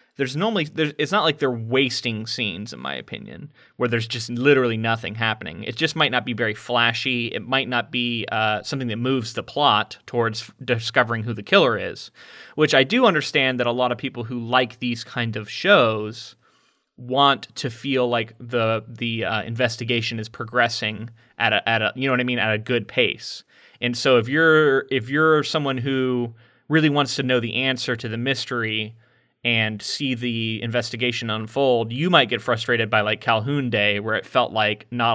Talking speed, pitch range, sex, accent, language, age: 195 wpm, 115-130 Hz, male, American, English, 30-49